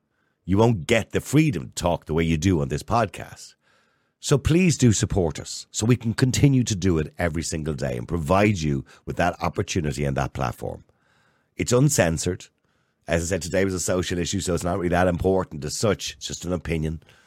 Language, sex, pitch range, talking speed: English, male, 80-105 Hz, 210 wpm